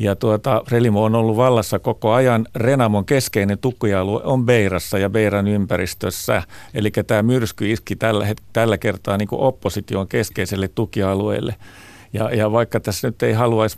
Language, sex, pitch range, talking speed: Finnish, male, 95-110 Hz, 155 wpm